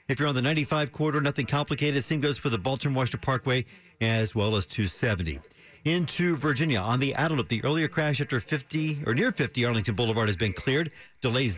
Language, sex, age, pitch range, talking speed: English, male, 50-69, 115-150 Hz, 190 wpm